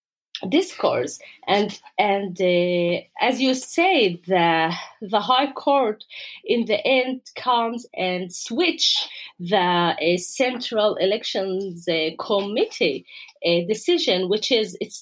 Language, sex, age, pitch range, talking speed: English, female, 30-49, 200-290 Hz, 110 wpm